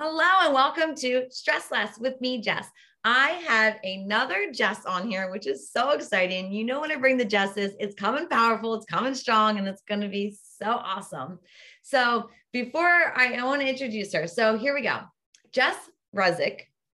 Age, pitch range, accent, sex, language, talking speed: 30-49, 200-265 Hz, American, female, English, 185 wpm